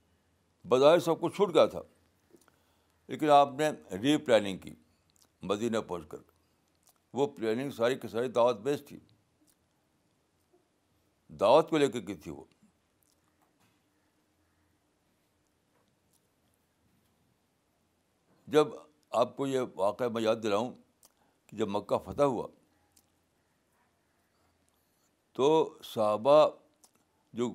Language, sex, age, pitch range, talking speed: Urdu, male, 60-79, 100-150 Hz, 100 wpm